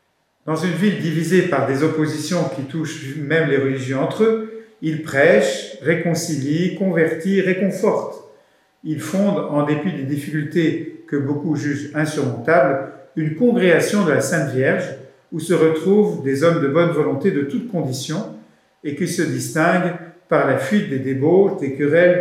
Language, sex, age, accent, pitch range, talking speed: French, male, 50-69, French, 135-175 Hz, 155 wpm